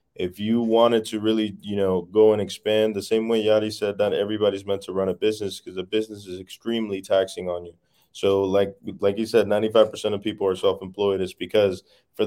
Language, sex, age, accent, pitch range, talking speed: English, male, 20-39, American, 100-115 Hz, 210 wpm